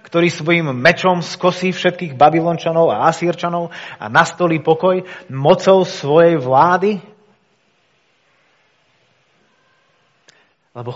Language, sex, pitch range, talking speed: Slovak, male, 130-180 Hz, 80 wpm